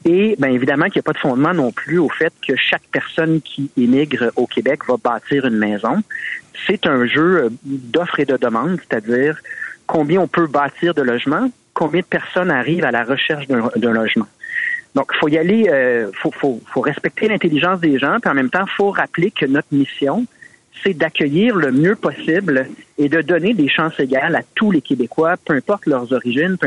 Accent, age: Canadian, 40-59